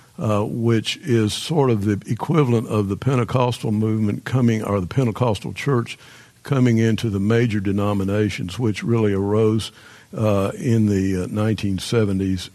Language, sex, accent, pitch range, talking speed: English, male, American, 100-120 Hz, 135 wpm